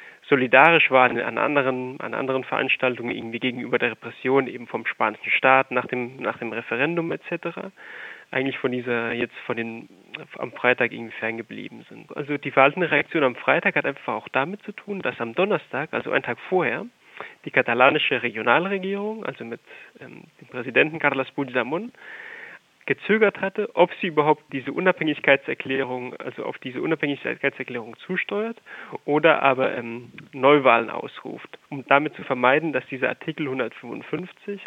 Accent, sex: German, male